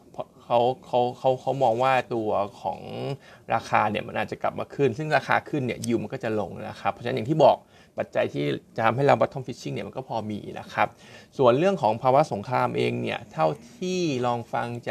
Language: Thai